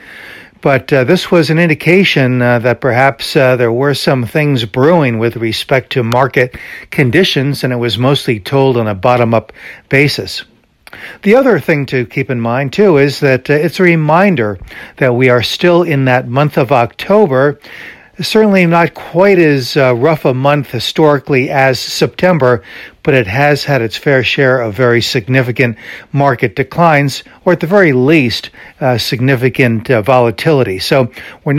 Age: 60-79